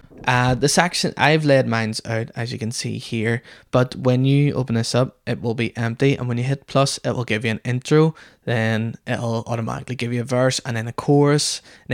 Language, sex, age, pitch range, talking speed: English, male, 10-29, 115-135 Hz, 225 wpm